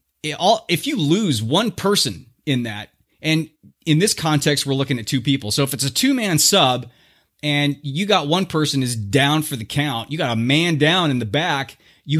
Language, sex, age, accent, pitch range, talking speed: English, male, 30-49, American, 130-165 Hz, 210 wpm